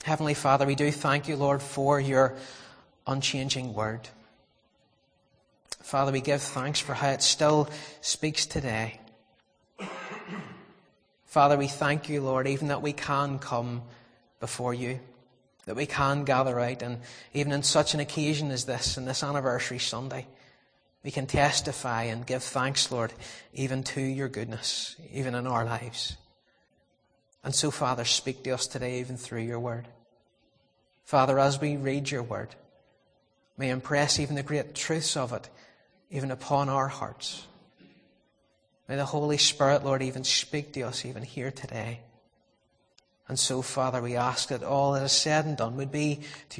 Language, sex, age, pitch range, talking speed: English, male, 30-49, 125-145 Hz, 155 wpm